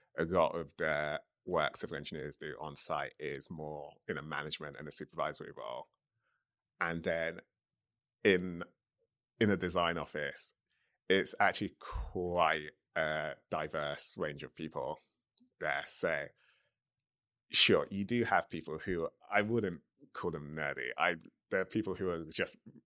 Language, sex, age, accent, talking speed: English, male, 30-49, British, 140 wpm